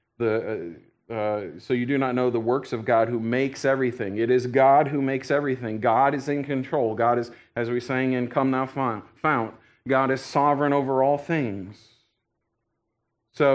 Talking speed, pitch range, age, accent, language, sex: 175 wpm, 120-160 Hz, 40-59, American, English, male